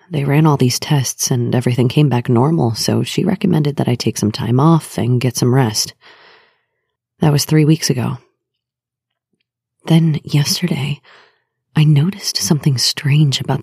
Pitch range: 120-155 Hz